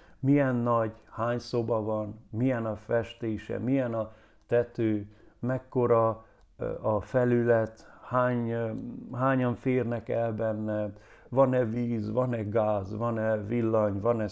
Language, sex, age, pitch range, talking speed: Hungarian, male, 50-69, 105-120 Hz, 105 wpm